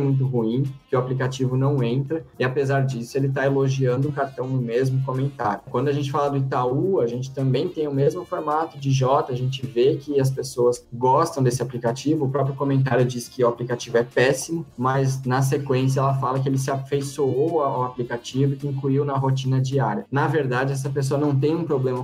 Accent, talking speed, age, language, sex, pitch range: Brazilian, 205 wpm, 20-39, Portuguese, male, 125-140 Hz